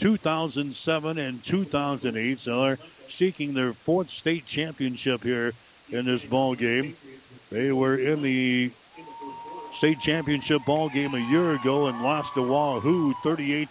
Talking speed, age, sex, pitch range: 135 wpm, 60-79, male, 125-150 Hz